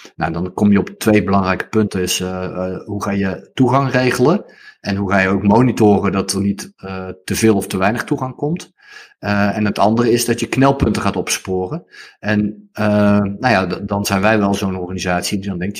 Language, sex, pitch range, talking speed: Dutch, male, 95-115 Hz, 215 wpm